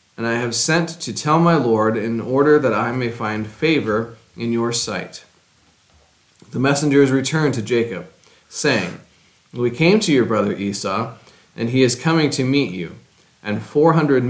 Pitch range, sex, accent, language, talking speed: 110-145 Hz, male, American, English, 170 wpm